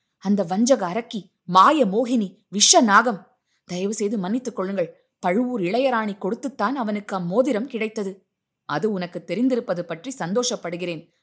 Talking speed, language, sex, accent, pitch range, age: 120 wpm, Tamil, female, native, 175-235 Hz, 20-39